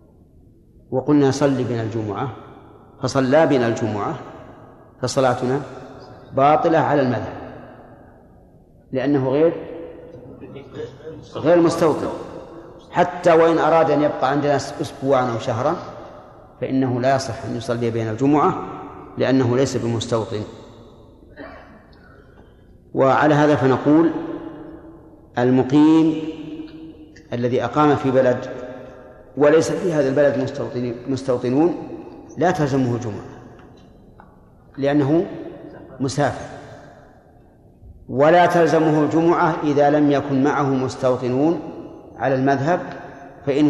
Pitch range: 125-150 Hz